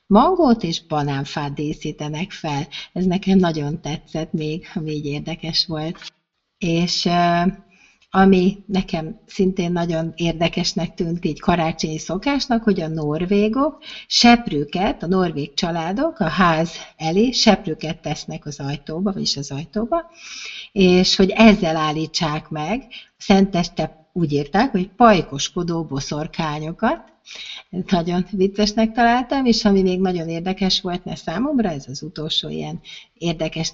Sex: female